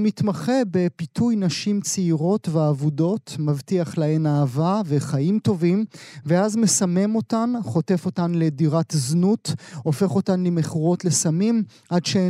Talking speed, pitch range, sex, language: 110 wpm, 150-190 Hz, male, Hebrew